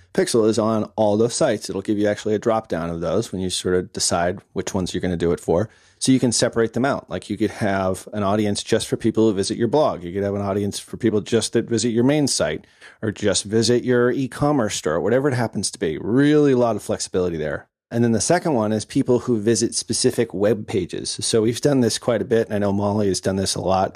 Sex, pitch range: male, 100-125 Hz